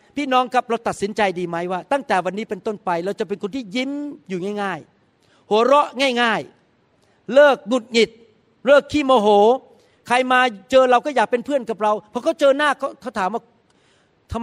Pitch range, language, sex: 195-270 Hz, Thai, male